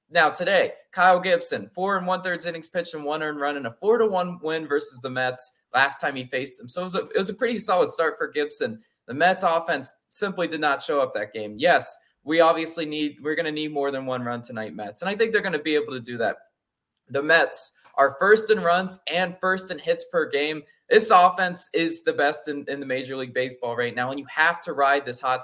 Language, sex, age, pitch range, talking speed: English, male, 20-39, 140-190 Hz, 250 wpm